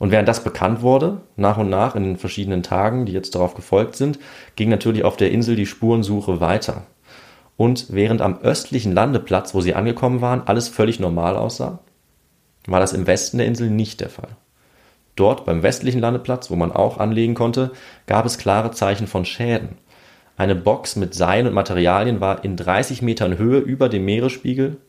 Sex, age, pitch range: male, 30-49, 95-120 Hz